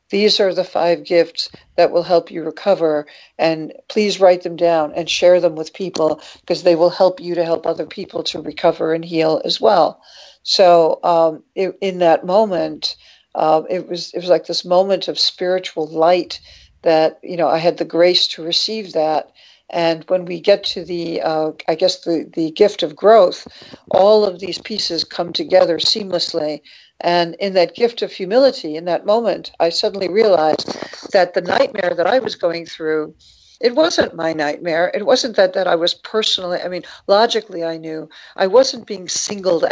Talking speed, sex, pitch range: 185 wpm, female, 165-195 Hz